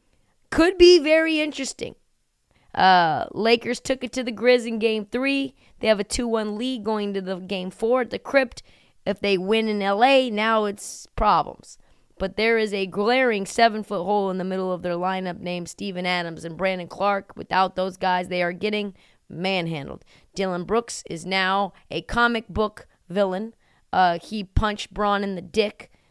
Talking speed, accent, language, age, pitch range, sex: 170 wpm, American, English, 20-39, 185-240 Hz, female